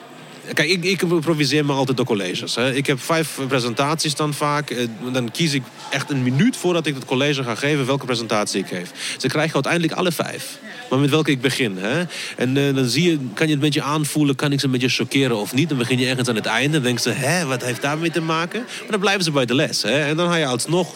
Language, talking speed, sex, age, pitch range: Dutch, 265 wpm, male, 30-49, 115-155 Hz